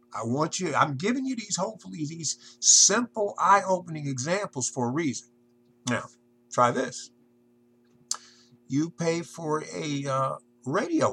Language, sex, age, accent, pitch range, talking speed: English, male, 50-69, American, 120-150 Hz, 130 wpm